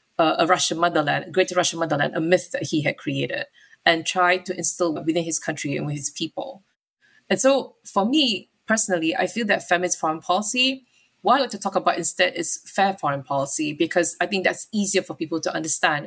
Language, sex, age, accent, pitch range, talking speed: English, female, 20-39, Malaysian, 165-195 Hz, 205 wpm